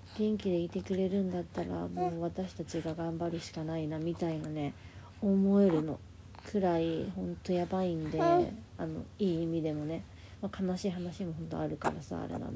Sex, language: female, Japanese